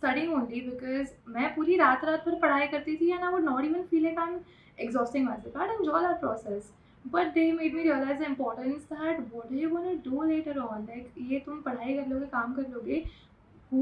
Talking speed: 205 wpm